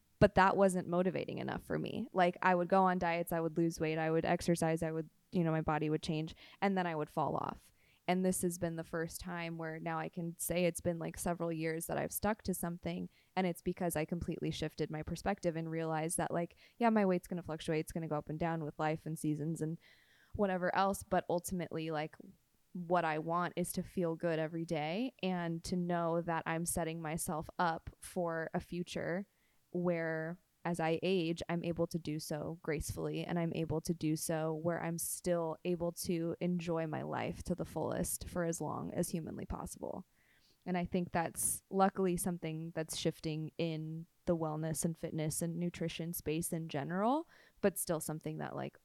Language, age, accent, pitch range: English, 20-39, American, 160-180 Hz